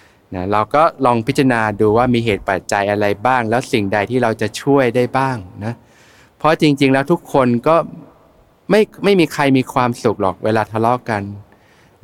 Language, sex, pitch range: Thai, male, 105-135 Hz